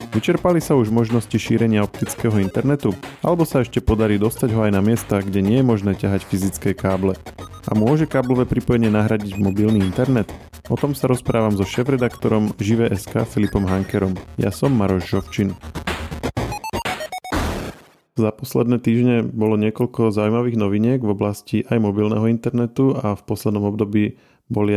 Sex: male